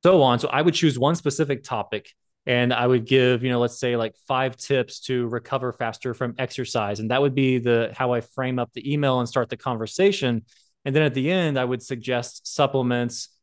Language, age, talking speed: English, 20-39, 220 wpm